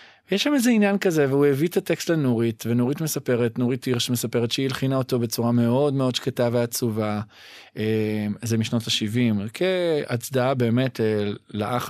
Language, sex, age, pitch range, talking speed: English, male, 20-39, 110-145 Hz, 145 wpm